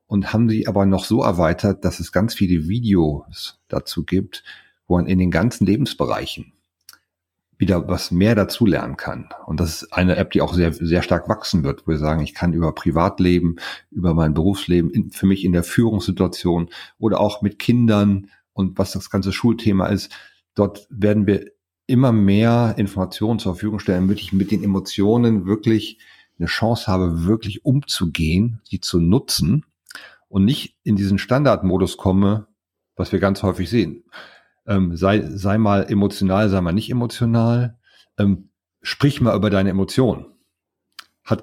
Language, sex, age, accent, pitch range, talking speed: German, male, 40-59, German, 90-110 Hz, 165 wpm